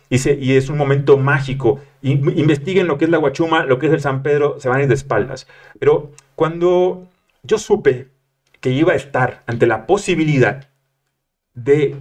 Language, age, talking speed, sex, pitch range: Spanish, 40-59, 180 wpm, male, 125-150 Hz